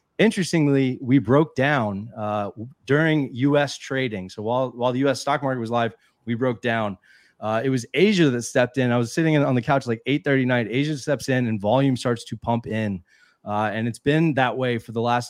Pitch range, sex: 110-135 Hz, male